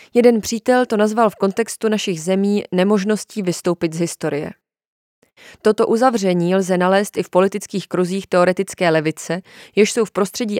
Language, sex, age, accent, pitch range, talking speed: Czech, female, 20-39, native, 175-210 Hz, 145 wpm